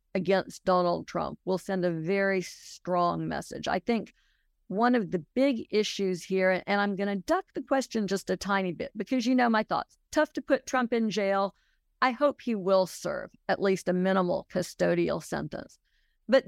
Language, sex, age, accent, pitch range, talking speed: English, female, 50-69, American, 180-240 Hz, 180 wpm